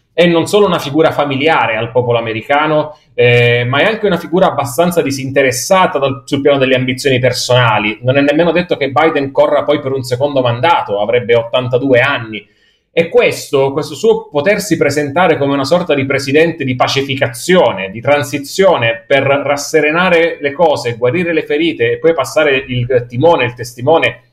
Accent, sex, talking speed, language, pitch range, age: native, male, 165 wpm, Italian, 125-155 Hz, 30-49